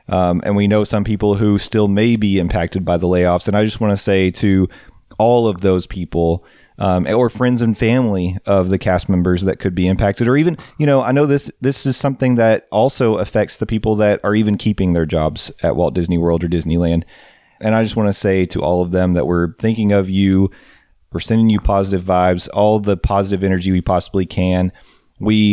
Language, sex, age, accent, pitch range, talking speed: English, male, 30-49, American, 95-110 Hz, 220 wpm